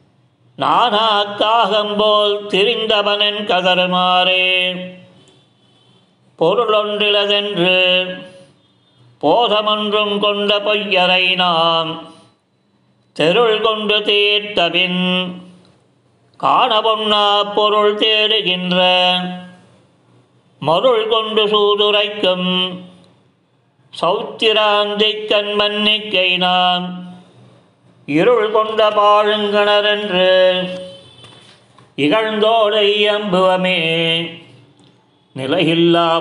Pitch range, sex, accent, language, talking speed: 180-210 Hz, male, native, Tamil, 50 wpm